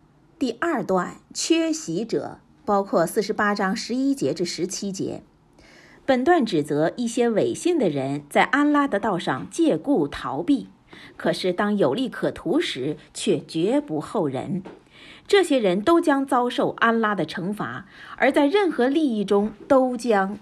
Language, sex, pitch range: Chinese, female, 185-280 Hz